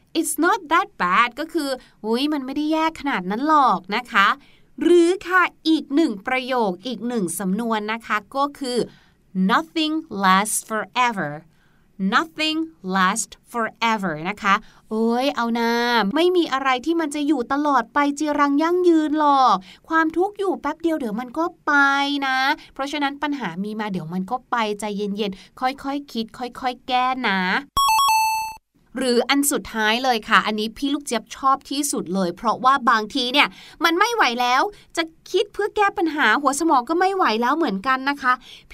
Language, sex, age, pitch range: Thai, female, 30-49, 225-320 Hz